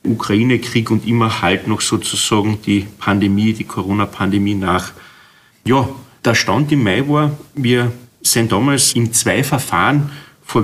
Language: German